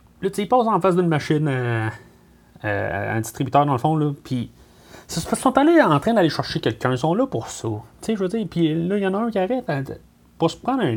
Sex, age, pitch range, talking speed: male, 30-49, 130-185 Hz, 255 wpm